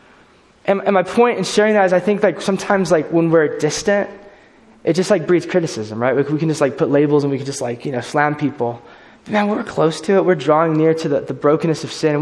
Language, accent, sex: English, American, male